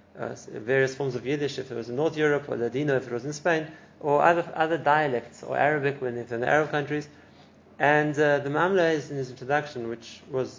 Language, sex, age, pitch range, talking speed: English, male, 20-39, 125-150 Hz, 220 wpm